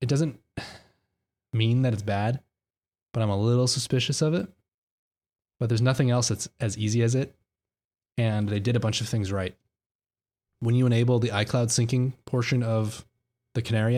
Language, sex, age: English, male, 20-39